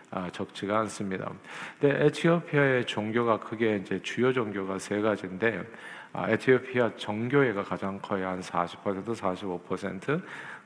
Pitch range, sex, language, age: 100-130 Hz, male, Korean, 40-59